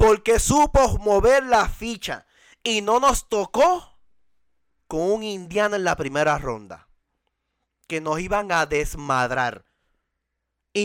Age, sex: 30-49, male